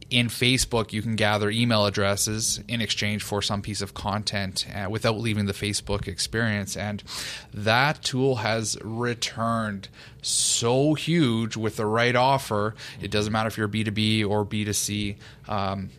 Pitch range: 105-125 Hz